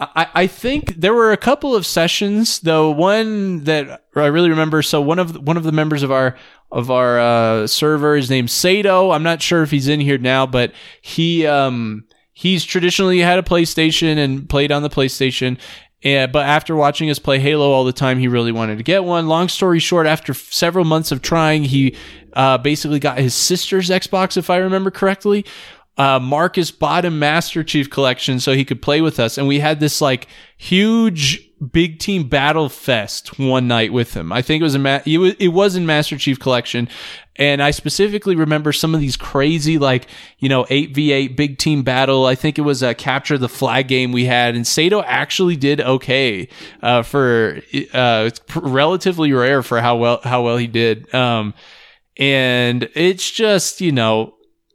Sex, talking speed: male, 195 wpm